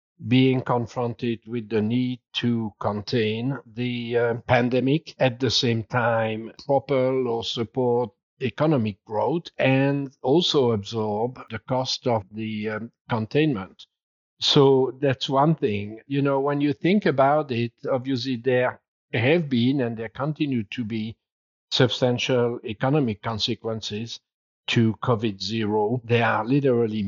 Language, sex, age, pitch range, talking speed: English, male, 50-69, 110-140 Hz, 125 wpm